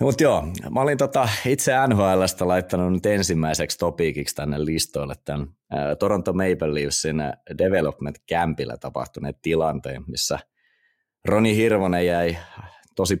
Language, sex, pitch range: Finnish, male, 75-90 Hz